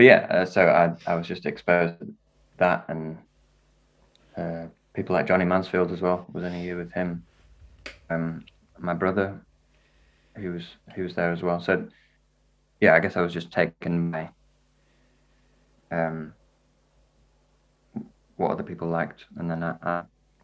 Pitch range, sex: 85-90 Hz, male